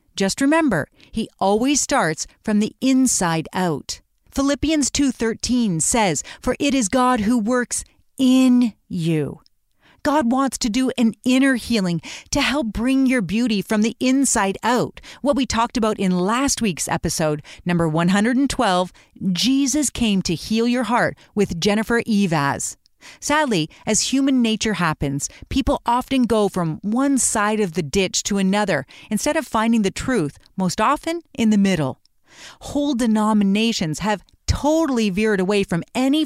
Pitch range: 190-260 Hz